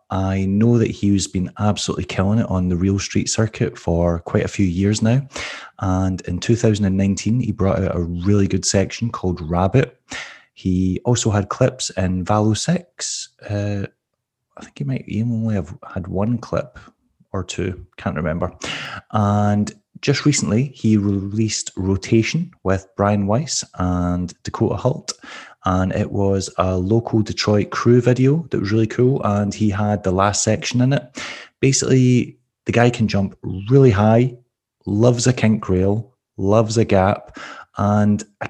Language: English